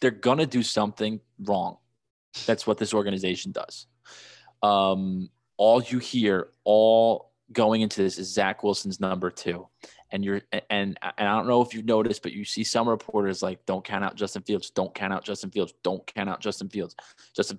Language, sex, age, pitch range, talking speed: English, male, 20-39, 95-110 Hz, 190 wpm